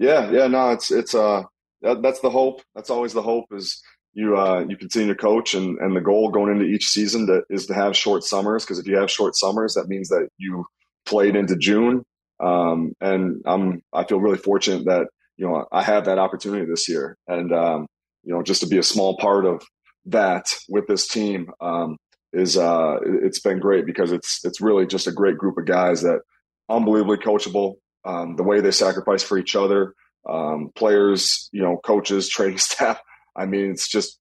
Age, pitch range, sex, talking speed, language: 20-39, 90-105 Hz, male, 205 wpm, English